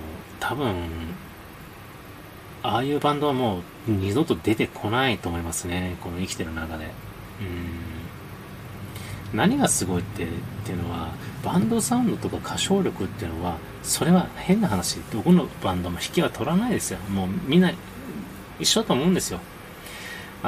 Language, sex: Japanese, male